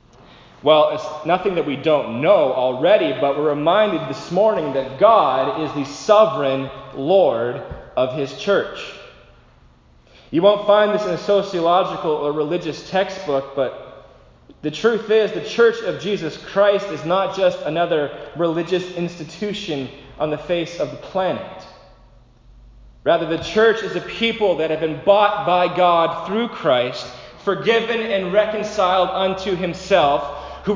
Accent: American